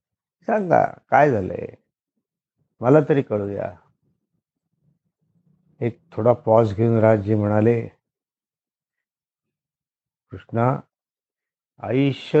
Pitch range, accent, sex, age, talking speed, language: 110-135 Hz, native, male, 50-69, 55 wpm, Marathi